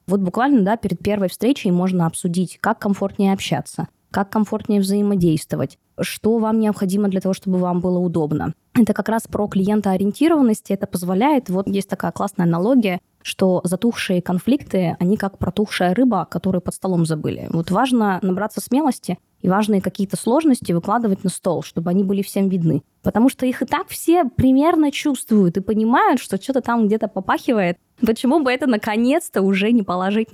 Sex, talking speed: female, 170 wpm